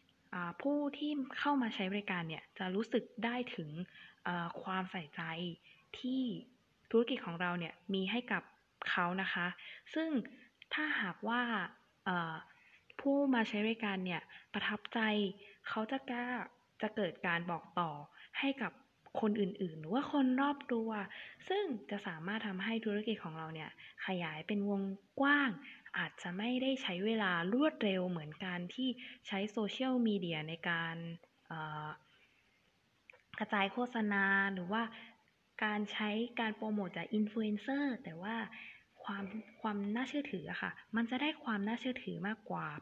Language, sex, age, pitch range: Thai, female, 20-39, 185-240 Hz